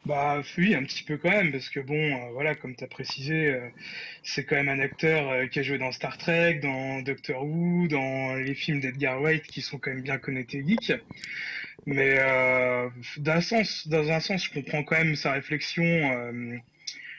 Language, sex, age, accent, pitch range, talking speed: French, male, 20-39, French, 135-165 Hz, 205 wpm